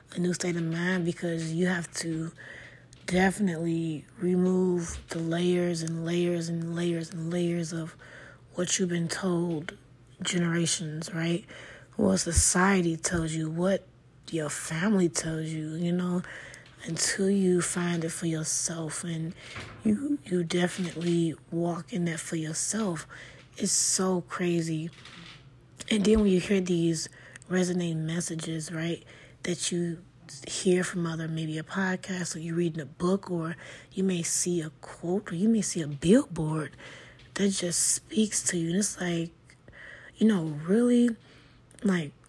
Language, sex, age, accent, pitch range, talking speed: English, female, 20-39, American, 160-180 Hz, 145 wpm